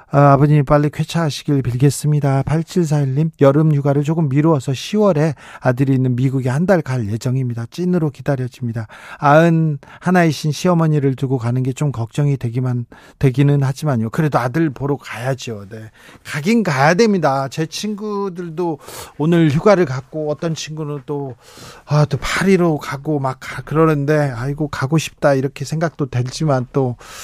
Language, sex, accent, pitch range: Korean, male, native, 135-170 Hz